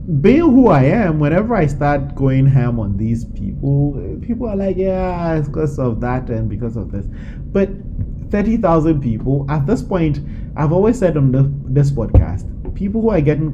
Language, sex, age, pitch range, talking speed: English, male, 20-39, 115-155 Hz, 180 wpm